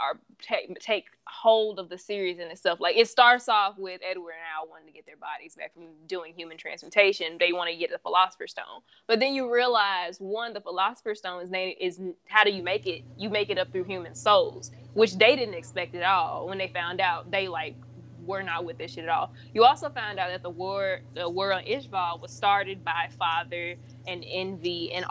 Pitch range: 170-210 Hz